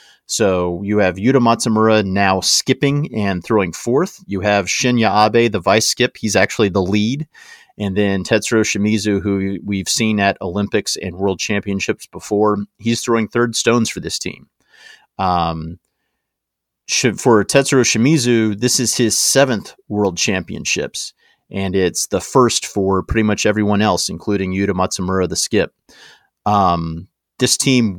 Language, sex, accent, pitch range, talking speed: English, male, American, 95-115 Hz, 145 wpm